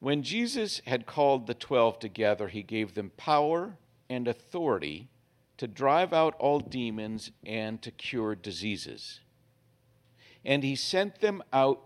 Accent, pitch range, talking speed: American, 115-140 Hz, 135 wpm